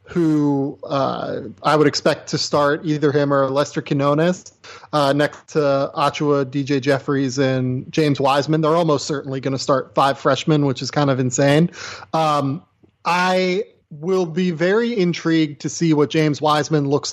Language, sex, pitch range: English, male, 140-170 Hz